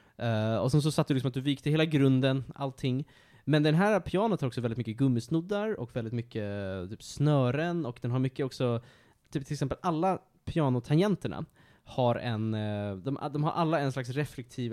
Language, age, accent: Swedish, 20-39, Norwegian